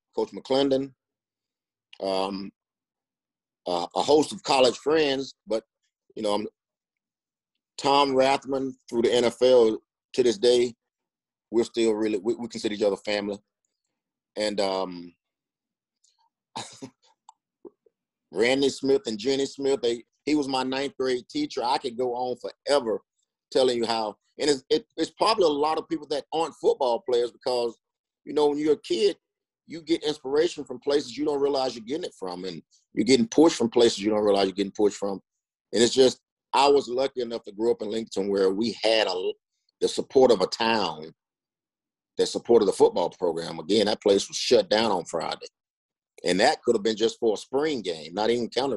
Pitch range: 105-150 Hz